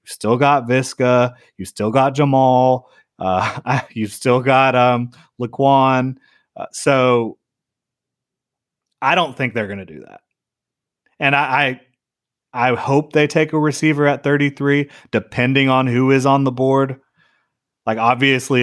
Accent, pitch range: American, 115-135 Hz